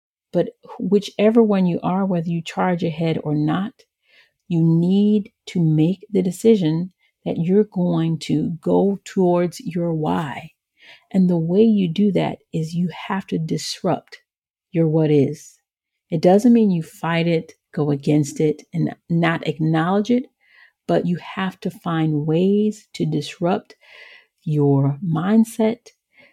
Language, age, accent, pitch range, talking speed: English, 40-59, American, 160-205 Hz, 140 wpm